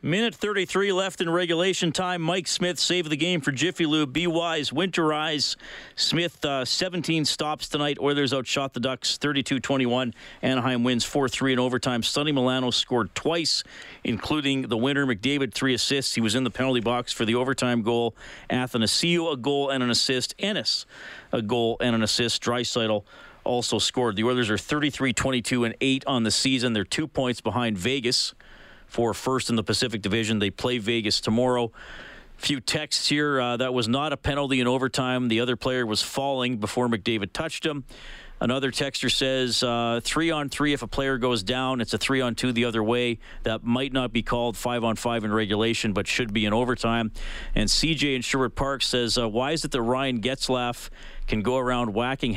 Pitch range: 115-140 Hz